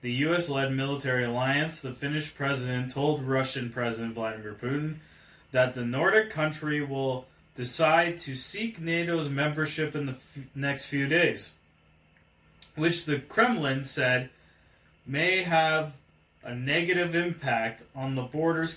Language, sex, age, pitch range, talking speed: English, male, 20-39, 125-155 Hz, 130 wpm